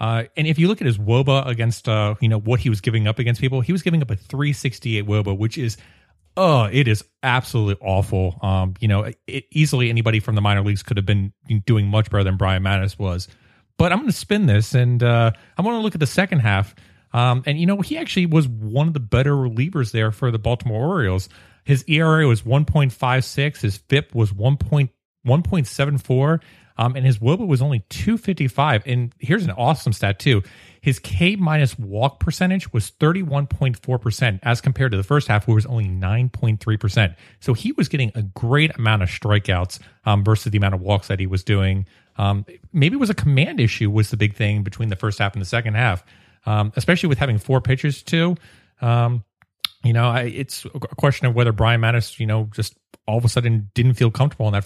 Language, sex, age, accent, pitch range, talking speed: English, male, 30-49, American, 105-140 Hz, 225 wpm